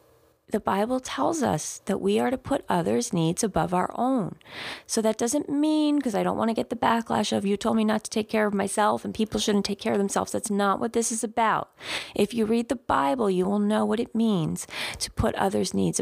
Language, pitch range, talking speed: English, 190-240 Hz, 240 wpm